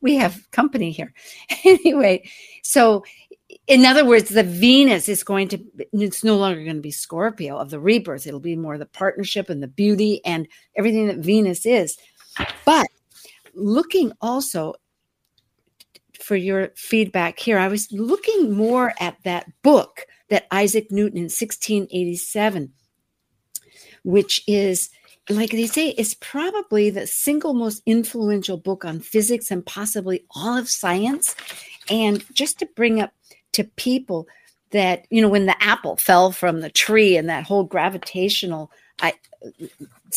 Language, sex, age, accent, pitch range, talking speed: English, female, 60-79, American, 185-230 Hz, 145 wpm